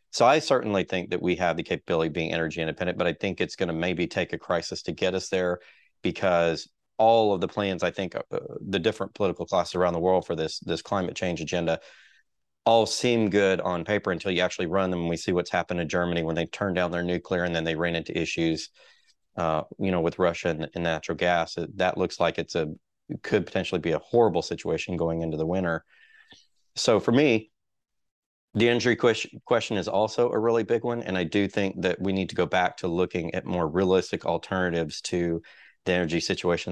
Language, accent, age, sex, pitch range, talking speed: English, American, 30-49, male, 85-95 Hz, 215 wpm